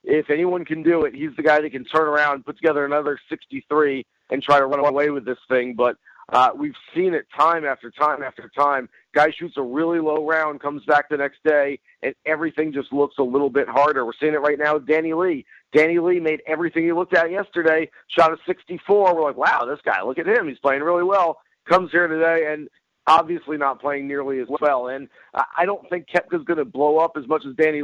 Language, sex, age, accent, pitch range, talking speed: English, male, 50-69, American, 145-170 Hz, 230 wpm